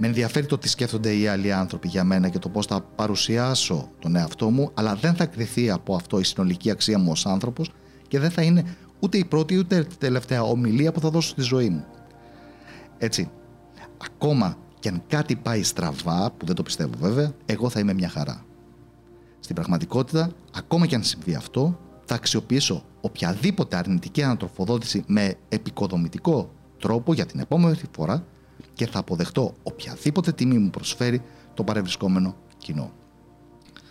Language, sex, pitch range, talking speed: Greek, male, 100-145 Hz, 165 wpm